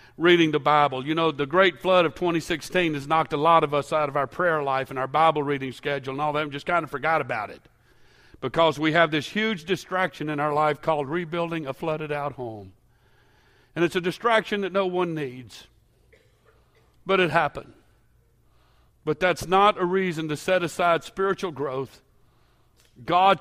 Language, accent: English, American